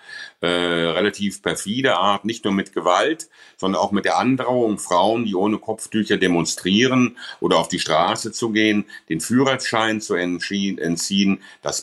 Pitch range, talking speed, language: 90-110 Hz, 150 wpm, German